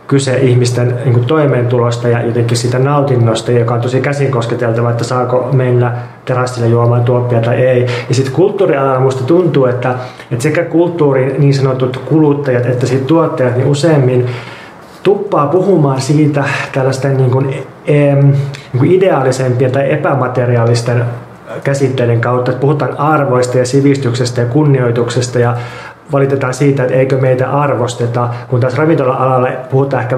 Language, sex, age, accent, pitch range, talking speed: Finnish, male, 30-49, native, 125-140 Hz, 125 wpm